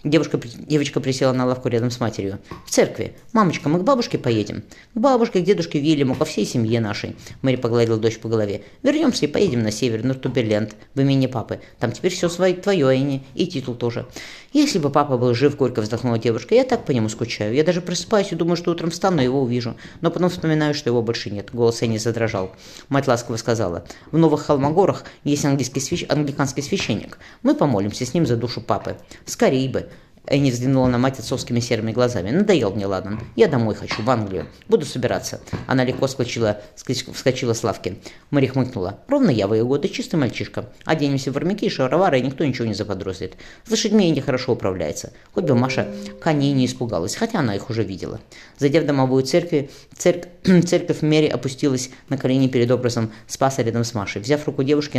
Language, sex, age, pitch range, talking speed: Russian, female, 20-39, 115-155 Hz, 195 wpm